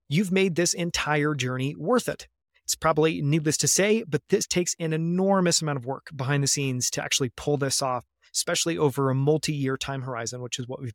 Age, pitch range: 30-49, 140-175 Hz